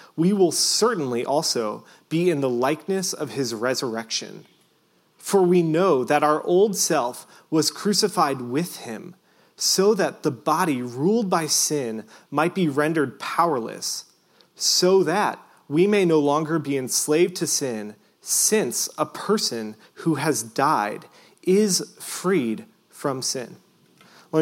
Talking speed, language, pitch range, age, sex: 135 wpm, English, 140-180 Hz, 30-49, male